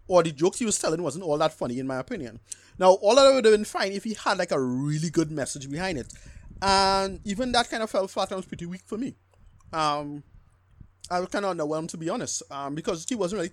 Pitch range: 130-190 Hz